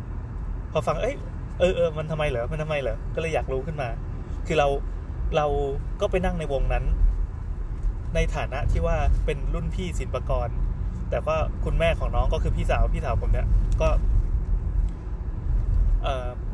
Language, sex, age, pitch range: Thai, male, 20-39, 75-100 Hz